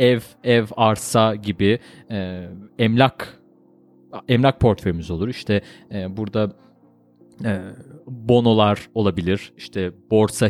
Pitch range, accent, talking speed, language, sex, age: 105-165 Hz, native, 95 wpm, Turkish, male, 40-59